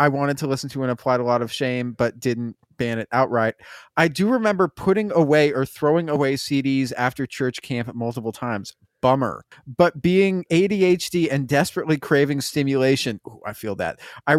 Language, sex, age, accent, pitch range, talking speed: English, male, 30-49, American, 125-160 Hz, 180 wpm